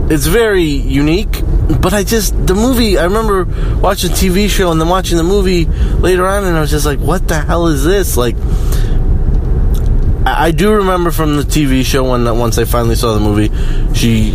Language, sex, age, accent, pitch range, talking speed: English, male, 20-39, American, 100-140 Hz, 195 wpm